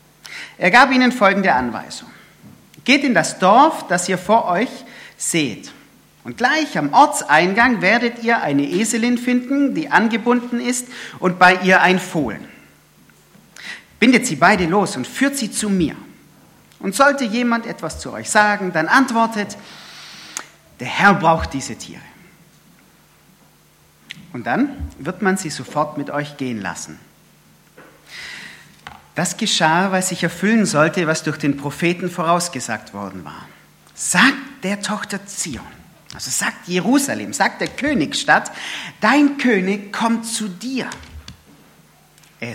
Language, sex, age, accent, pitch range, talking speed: German, male, 40-59, German, 160-230 Hz, 130 wpm